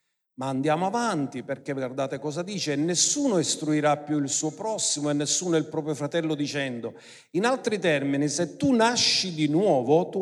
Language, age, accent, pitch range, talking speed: Italian, 50-69, native, 125-165 Hz, 165 wpm